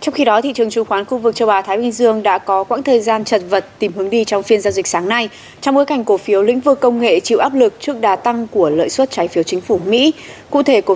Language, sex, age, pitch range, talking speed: Vietnamese, female, 20-39, 195-250 Hz, 305 wpm